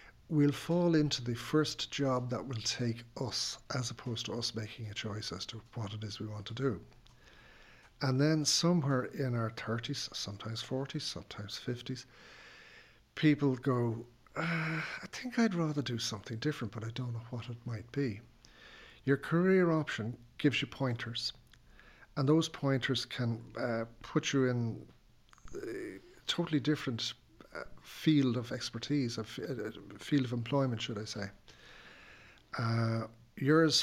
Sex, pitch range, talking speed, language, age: male, 110-135 Hz, 150 wpm, English, 50-69